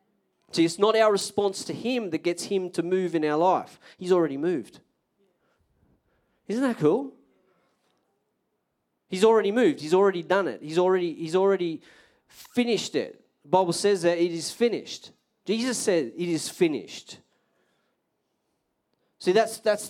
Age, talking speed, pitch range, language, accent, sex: 40-59, 150 wpm, 175-215 Hz, English, Australian, male